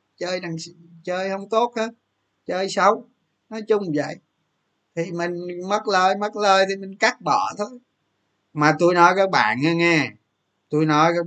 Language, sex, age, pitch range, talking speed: Vietnamese, male, 20-39, 135-190 Hz, 165 wpm